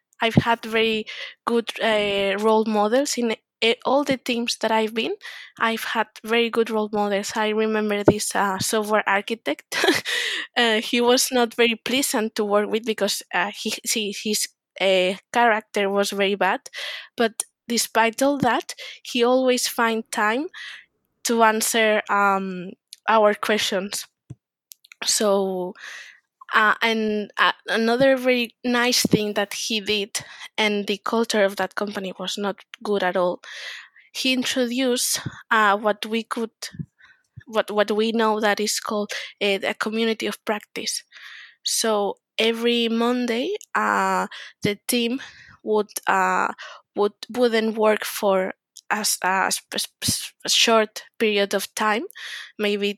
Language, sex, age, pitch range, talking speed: English, female, 20-39, 205-235 Hz, 135 wpm